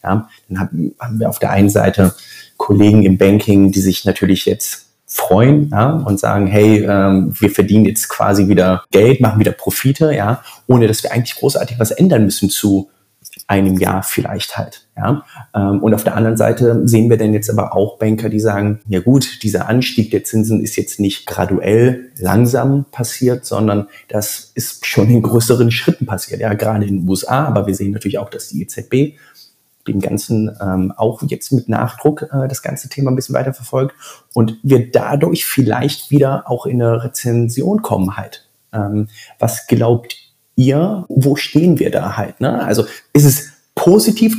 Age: 30-49